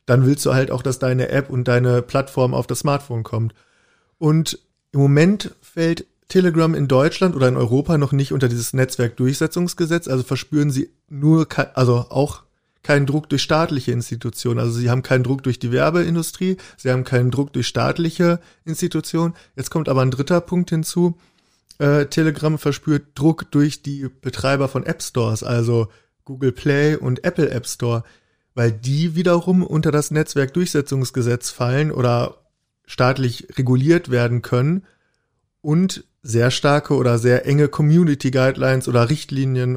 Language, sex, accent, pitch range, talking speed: German, male, German, 125-155 Hz, 150 wpm